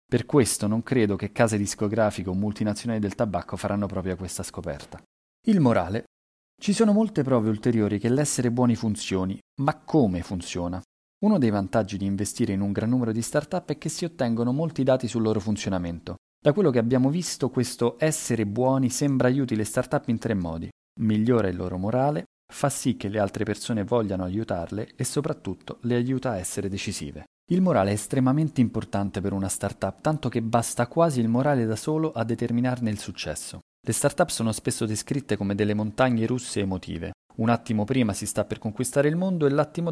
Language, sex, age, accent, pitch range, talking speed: Italian, male, 30-49, native, 100-135 Hz, 185 wpm